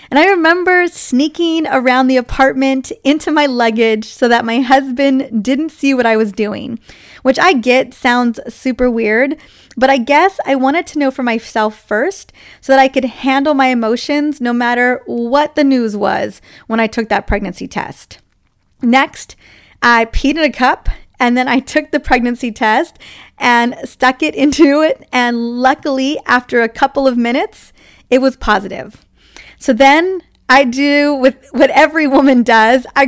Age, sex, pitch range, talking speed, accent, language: 20-39, female, 235-290 Hz, 170 wpm, American, English